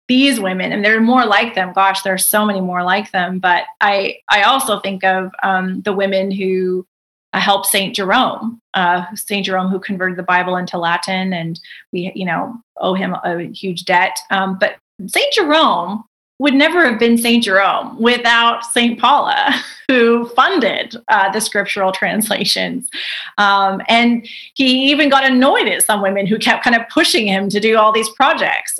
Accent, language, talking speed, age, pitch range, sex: American, English, 180 wpm, 30-49, 195-255 Hz, female